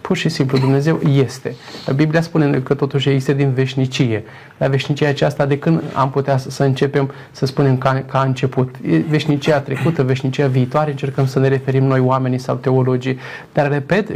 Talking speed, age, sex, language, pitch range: 175 wpm, 20-39, male, Romanian, 135-150 Hz